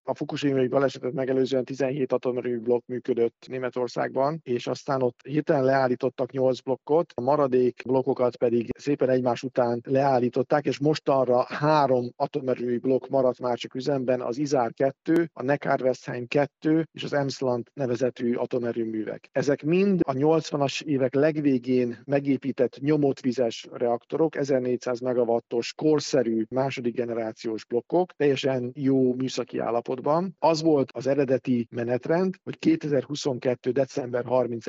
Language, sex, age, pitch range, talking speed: Hungarian, male, 50-69, 120-140 Hz, 125 wpm